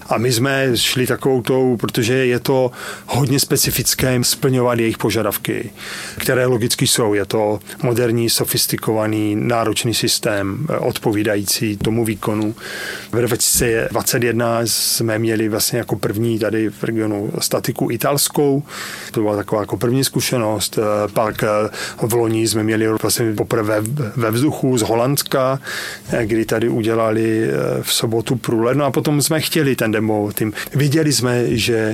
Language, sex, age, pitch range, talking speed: Czech, male, 30-49, 110-125 Hz, 130 wpm